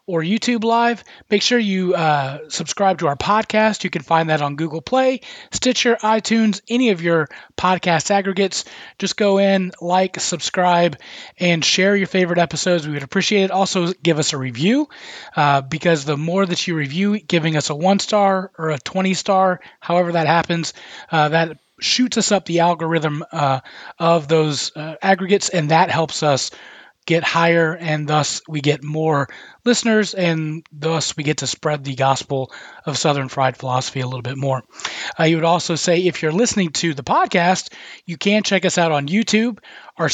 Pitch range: 155-195 Hz